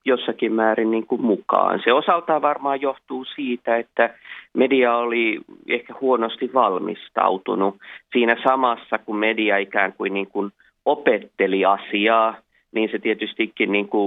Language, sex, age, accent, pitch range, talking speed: Finnish, male, 30-49, native, 105-140 Hz, 110 wpm